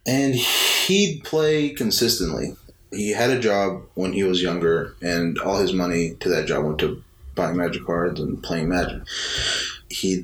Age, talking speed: 20-39, 165 wpm